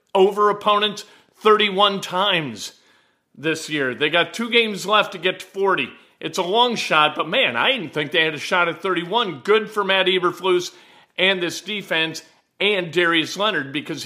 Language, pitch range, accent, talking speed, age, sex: English, 165-210 Hz, American, 175 wpm, 50-69, male